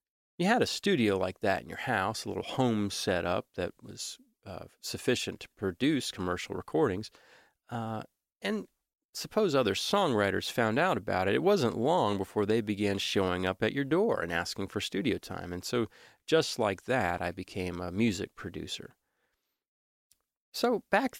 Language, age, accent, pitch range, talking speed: English, 40-59, American, 95-120 Hz, 165 wpm